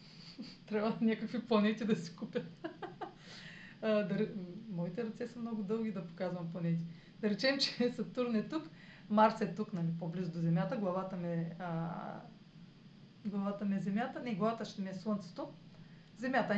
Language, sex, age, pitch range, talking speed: Bulgarian, female, 30-49, 175-235 Hz, 150 wpm